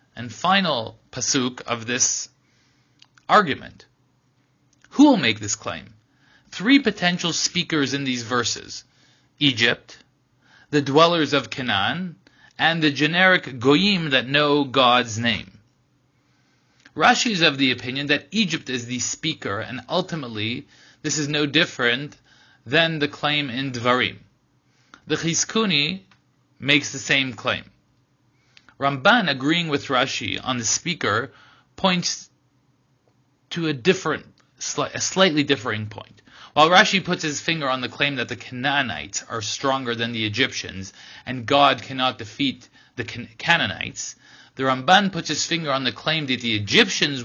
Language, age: English, 30-49